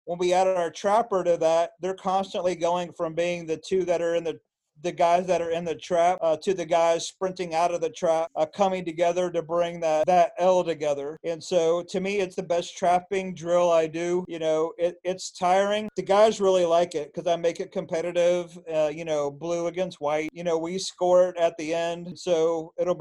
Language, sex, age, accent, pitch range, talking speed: English, male, 40-59, American, 165-185 Hz, 220 wpm